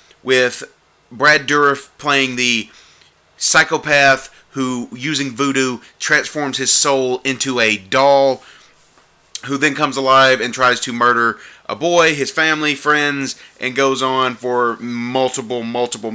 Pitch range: 125-155 Hz